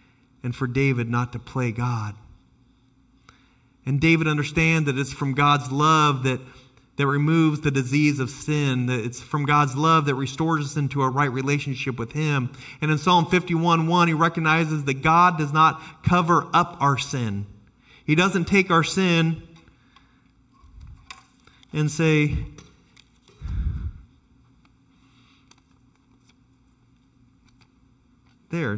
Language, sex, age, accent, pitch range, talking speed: English, male, 40-59, American, 125-150 Hz, 120 wpm